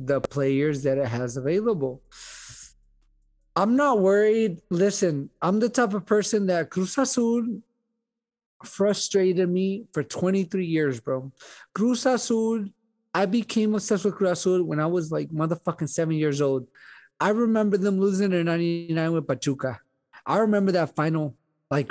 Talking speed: 145 wpm